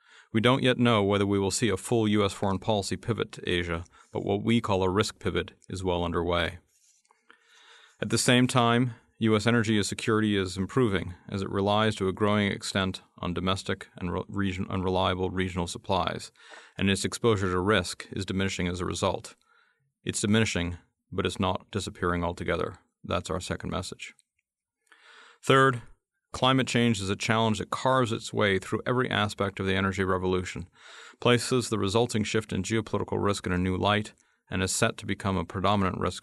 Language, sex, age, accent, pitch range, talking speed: English, male, 40-59, American, 95-110 Hz, 175 wpm